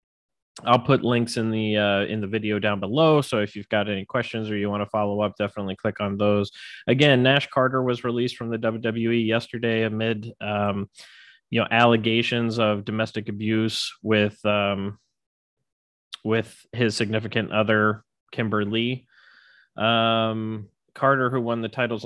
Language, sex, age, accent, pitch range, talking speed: English, male, 20-39, American, 105-120 Hz, 160 wpm